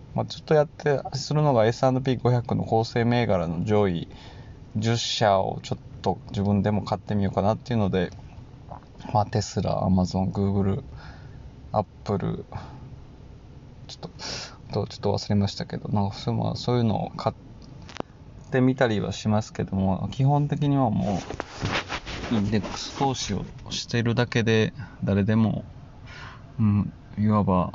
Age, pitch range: 20-39, 100-125 Hz